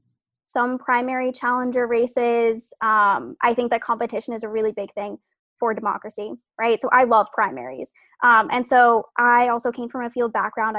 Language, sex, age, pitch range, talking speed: English, female, 10-29, 220-250 Hz, 170 wpm